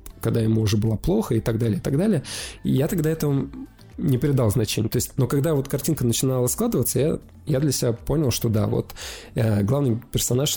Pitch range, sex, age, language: 110-140 Hz, male, 20-39, Russian